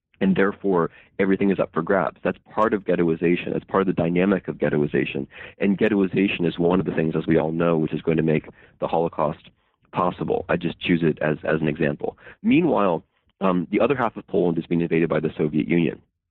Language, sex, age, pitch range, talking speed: English, male, 30-49, 80-100 Hz, 215 wpm